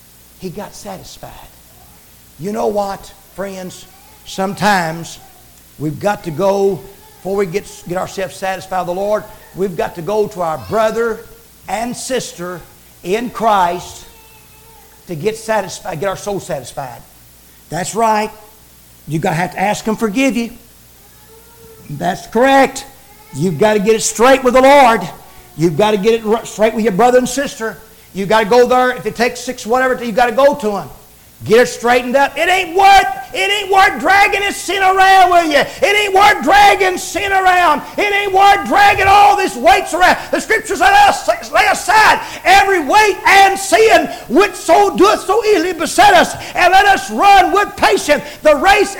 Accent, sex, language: American, male, English